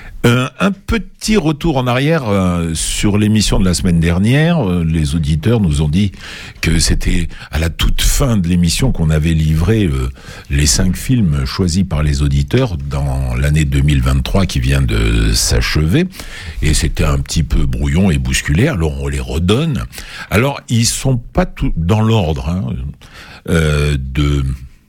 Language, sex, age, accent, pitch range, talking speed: French, male, 60-79, French, 75-100 Hz, 160 wpm